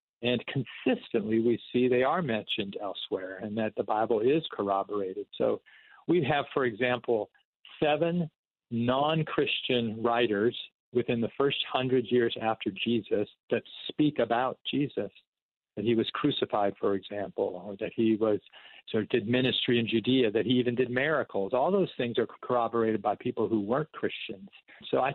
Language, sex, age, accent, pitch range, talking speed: English, male, 50-69, American, 115-145 Hz, 155 wpm